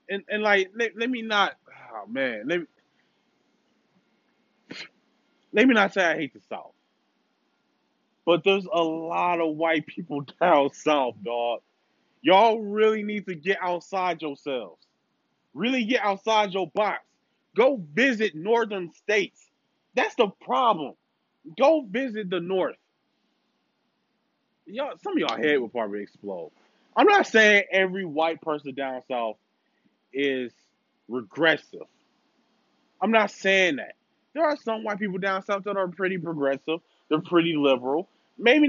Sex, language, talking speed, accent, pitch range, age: male, English, 140 wpm, American, 175-250 Hz, 20-39